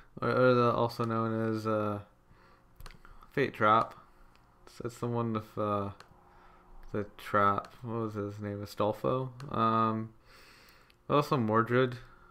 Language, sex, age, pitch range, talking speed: English, male, 20-39, 105-130 Hz, 105 wpm